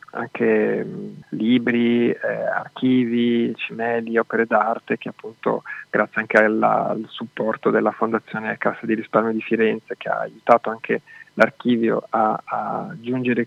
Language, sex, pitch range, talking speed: Italian, male, 110-120 Hz, 135 wpm